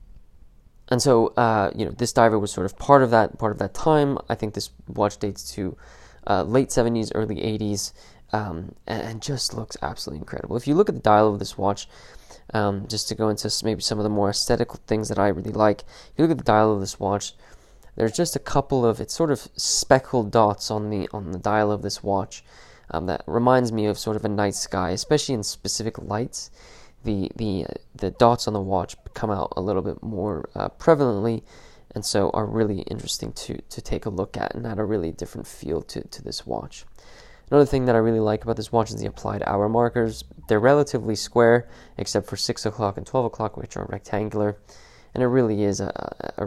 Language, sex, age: English, male, 20-39